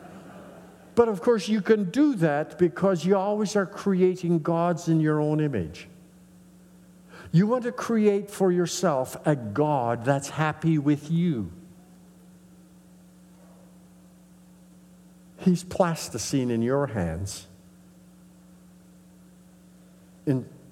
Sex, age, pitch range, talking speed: male, 60-79, 120-180 Hz, 100 wpm